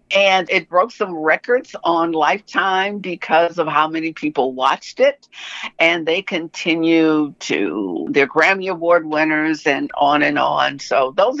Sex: female